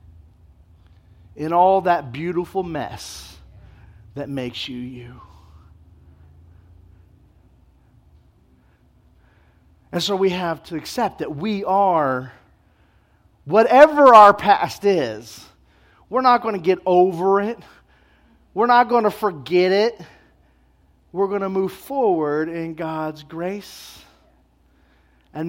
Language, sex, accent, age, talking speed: English, male, American, 40-59, 105 wpm